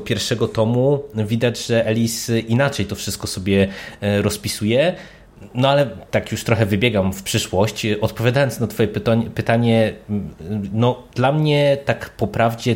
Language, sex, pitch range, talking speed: Polish, male, 100-115 Hz, 130 wpm